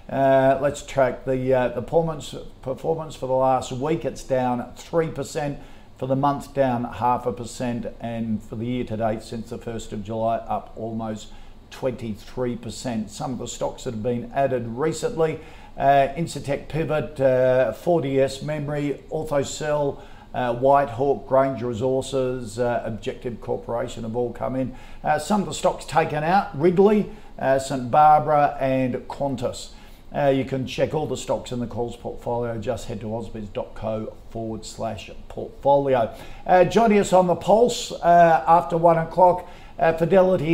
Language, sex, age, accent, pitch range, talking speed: English, male, 50-69, Australian, 115-145 Hz, 155 wpm